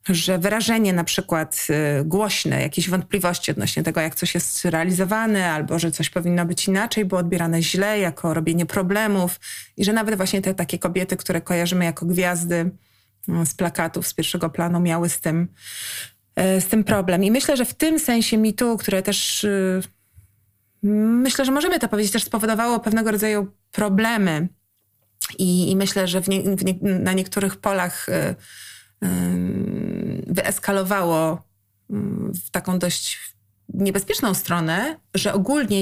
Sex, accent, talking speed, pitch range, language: female, native, 135 wpm, 175-210 Hz, Polish